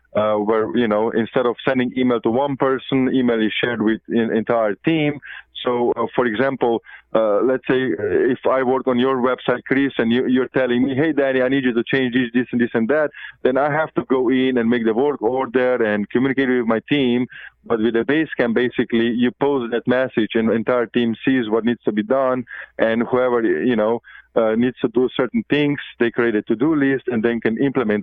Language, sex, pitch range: English, male, 115-130 Hz